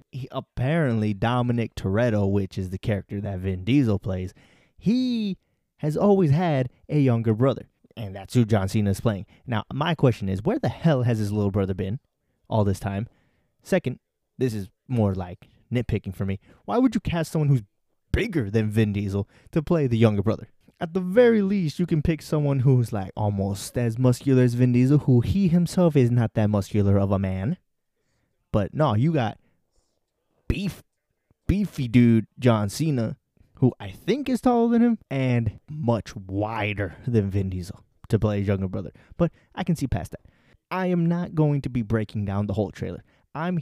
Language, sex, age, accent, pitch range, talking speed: English, male, 20-39, American, 100-145 Hz, 185 wpm